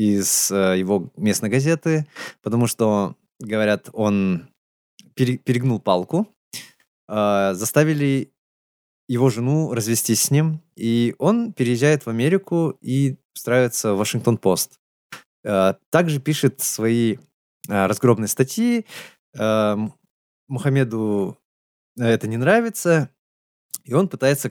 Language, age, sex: Russian, 20-39, male